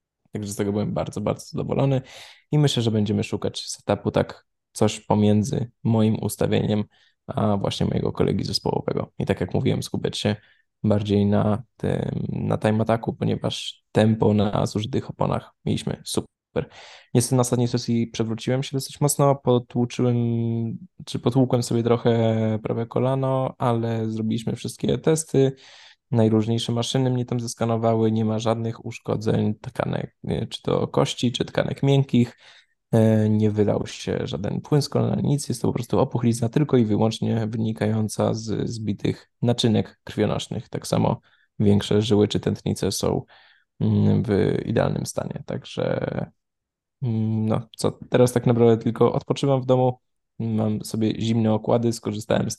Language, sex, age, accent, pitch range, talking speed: Polish, male, 20-39, native, 110-130 Hz, 140 wpm